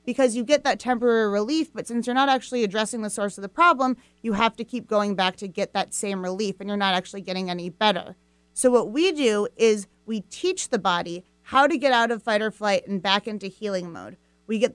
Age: 30-49